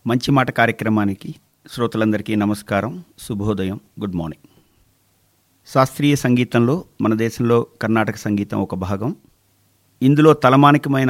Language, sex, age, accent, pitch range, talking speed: Telugu, male, 50-69, native, 105-130 Hz, 95 wpm